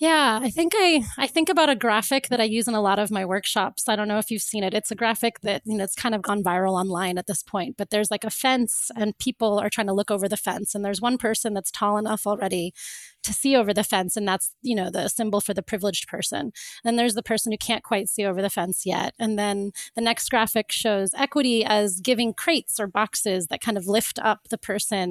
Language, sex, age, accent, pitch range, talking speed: English, female, 20-39, American, 200-240 Hz, 260 wpm